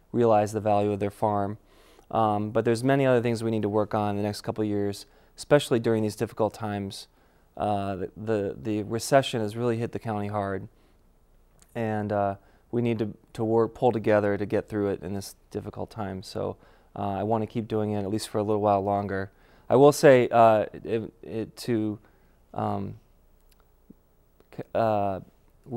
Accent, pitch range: American, 100-115 Hz